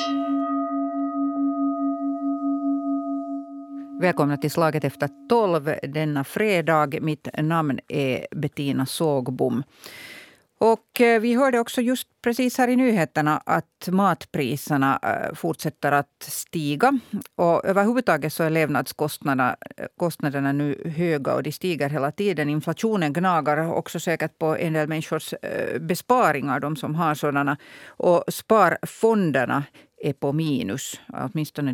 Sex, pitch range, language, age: female, 140-185 Hz, Swedish, 50-69